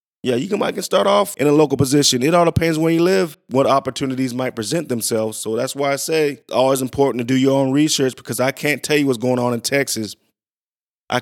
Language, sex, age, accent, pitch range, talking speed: English, male, 20-39, American, 115-135 Hz, 245 wpm